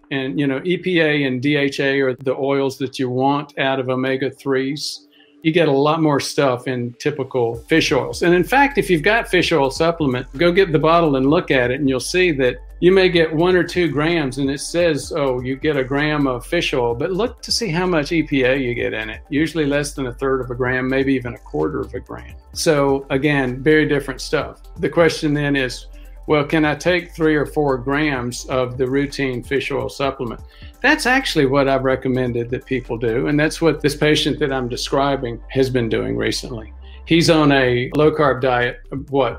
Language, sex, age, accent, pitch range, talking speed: English, male, 50-69, American, 130-155 Hz, 215 wpm